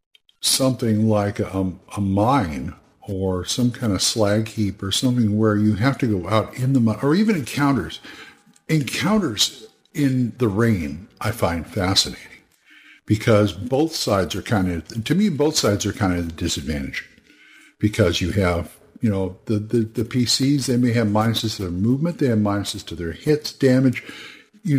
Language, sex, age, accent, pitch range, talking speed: English, male, 50-69, American, 100-135 Hz, 165 wpm